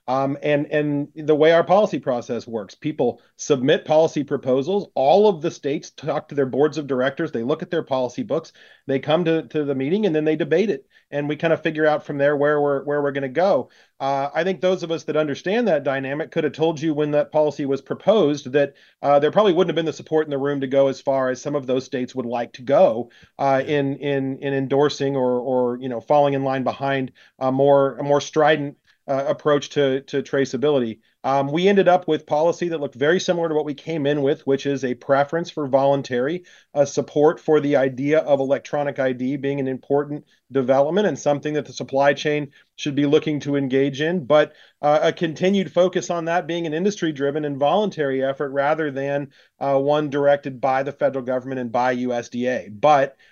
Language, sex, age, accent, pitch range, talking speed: English, male, 40-59, American, 135-155 Hz, 215 wpm